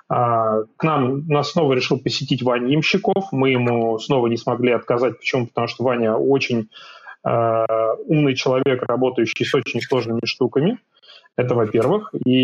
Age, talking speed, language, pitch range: 30-49, 145 wpm, Russian, 120-150 Hz